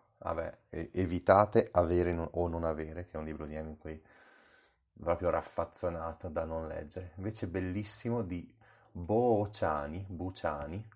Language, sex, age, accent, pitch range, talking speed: Italian, male, 30-49, native, 85-95 Hz, 140 wpm